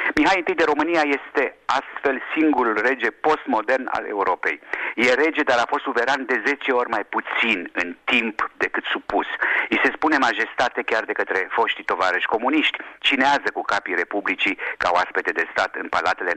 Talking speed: 170 wpm